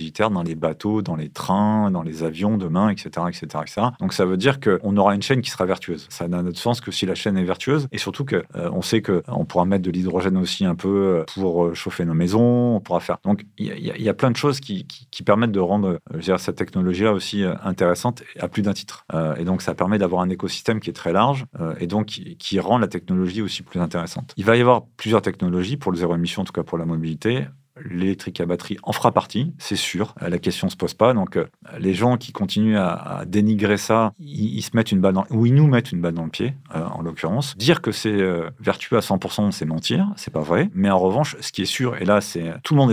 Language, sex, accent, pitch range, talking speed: French, male, French, 90-115 Hz, 265 wpm